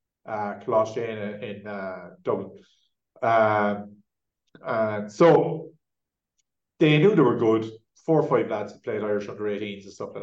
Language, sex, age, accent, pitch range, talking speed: English, male, 30-49, Irish, 105-140 Hz, 155 wpm